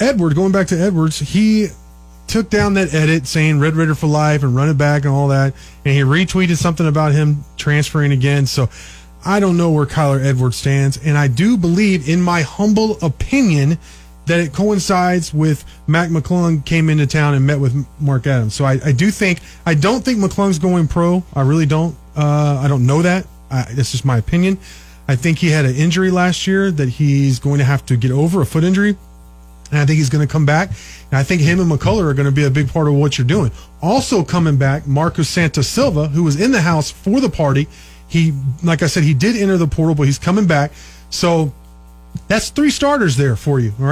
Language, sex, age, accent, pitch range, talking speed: English, male, 30-49, American, 140-175 Hz, 220 wpm